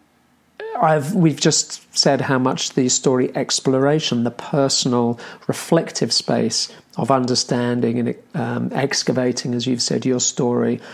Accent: British